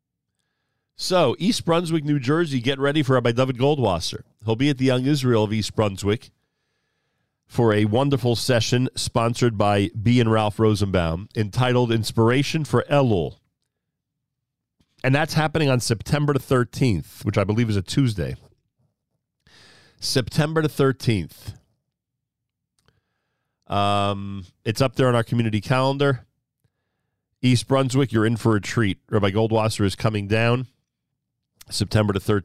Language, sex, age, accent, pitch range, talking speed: English, male, 40-59, American, 100-130 Hz, 135 wpm